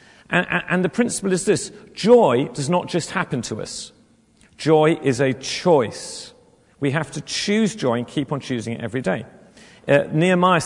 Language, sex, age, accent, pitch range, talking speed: English, male, 40-59, British, 140-180 Hz, 170 wpm